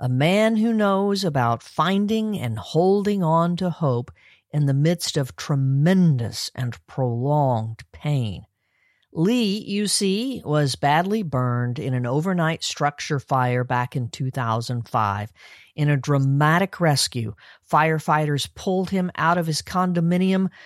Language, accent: English, American